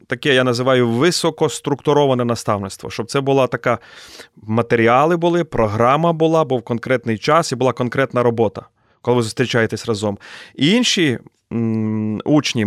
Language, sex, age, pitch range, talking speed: Ukrainian, male, 30-49, 115-145 Hz, 135 wpm